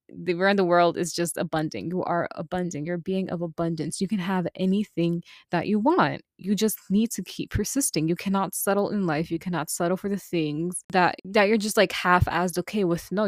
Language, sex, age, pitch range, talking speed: English, female, 20-39, 170-205 Hz, 220 wpm